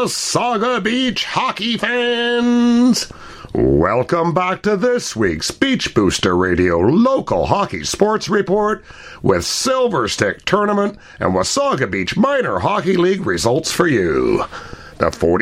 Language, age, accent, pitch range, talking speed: English, 60-79, American, 140-220 Hz, 115 wpm